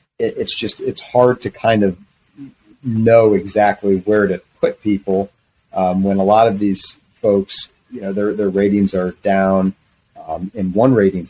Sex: male